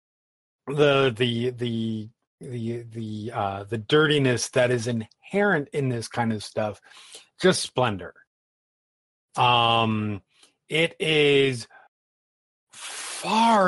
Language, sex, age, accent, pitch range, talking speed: English, male, 30-49, American, 110-140 Hz, 95 wpm